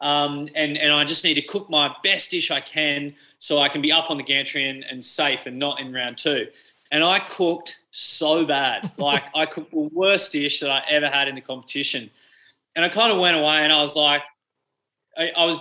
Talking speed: 230 wpm